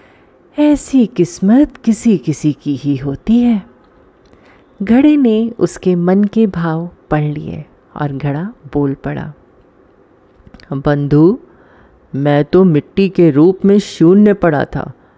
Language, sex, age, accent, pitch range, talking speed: Hindi, female, 30-49, native, 140-175 Hz, 120 wpm